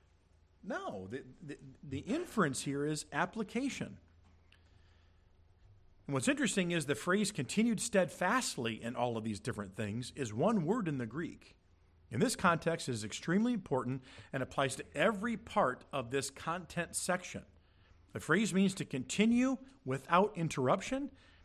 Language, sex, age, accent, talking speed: English, male, 50-69, American, 145 wpm